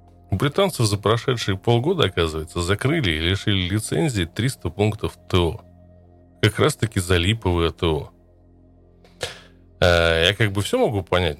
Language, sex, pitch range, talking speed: Russian, male, 85-110 Hz, 125 wpm